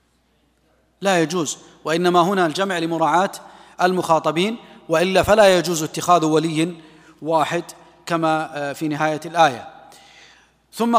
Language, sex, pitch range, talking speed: Arabic, male, 165-205 Hz, 100 wpm